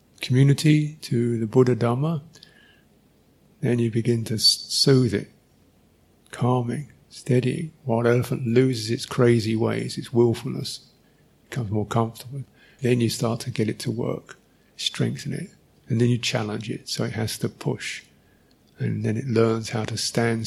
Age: 50-69